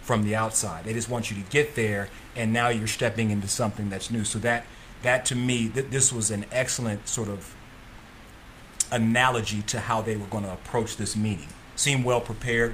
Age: 30-49